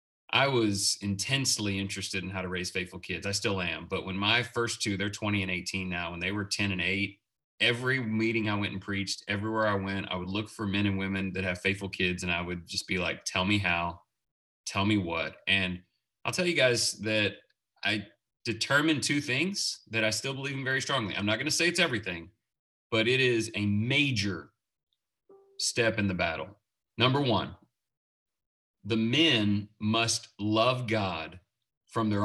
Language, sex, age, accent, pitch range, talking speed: English, male, 30-49, American, 100-150 Hz, 190 wpm